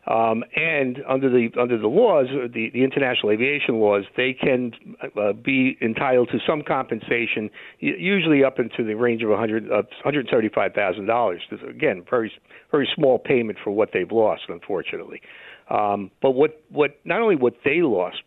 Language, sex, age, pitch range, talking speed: English, male, 60-79, 115-150 Hz, 165 wpm